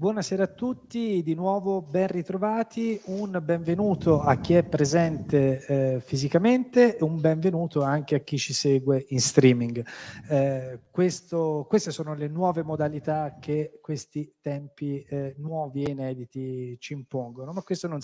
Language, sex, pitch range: Italian, male, 145-185 Hz